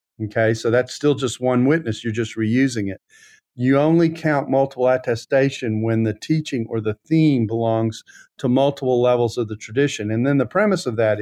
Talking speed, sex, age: 185 wpm, male, 50-69